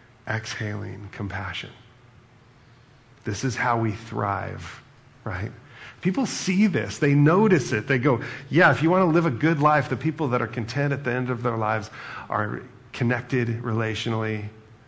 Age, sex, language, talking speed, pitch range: 40-59, male, English, 155 wpm, 115-135 Hz